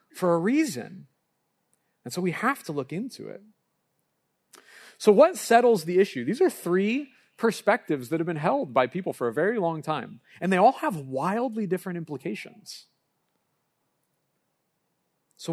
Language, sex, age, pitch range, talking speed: English, male, 30-49, 120-175 Hz, 150 wpm